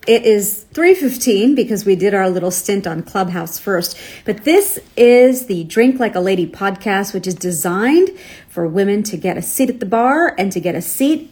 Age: 40-59